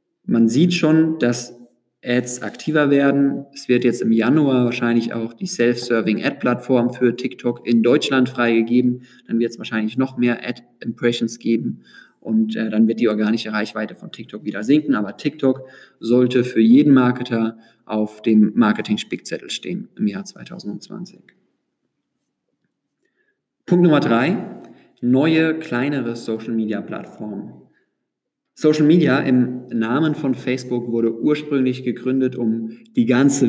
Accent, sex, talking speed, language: German, male, 125 wpm, German